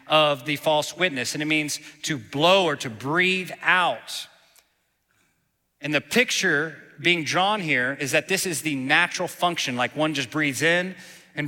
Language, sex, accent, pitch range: English, male, American, 125-155 Hz